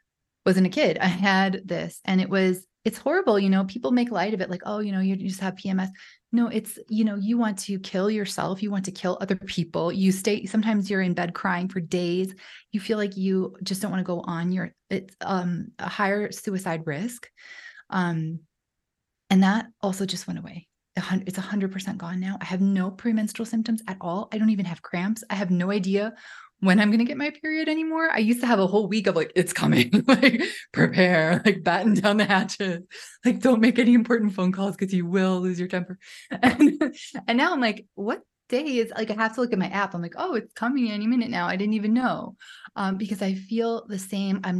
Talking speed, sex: 230 wpm, female